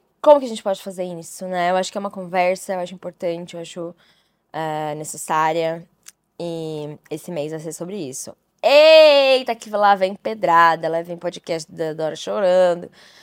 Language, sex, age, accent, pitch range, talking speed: Portuguese, female, 10-29, Brazilian, 175-225 Hz, 170 wpm